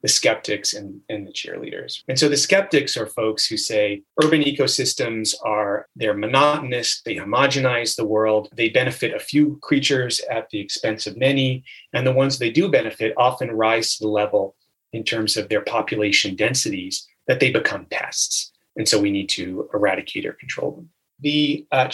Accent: American